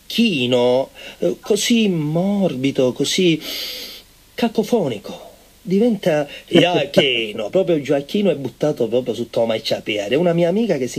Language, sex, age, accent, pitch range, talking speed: Italian, male, 40-59, native, 150-235 Hz, 110 wpm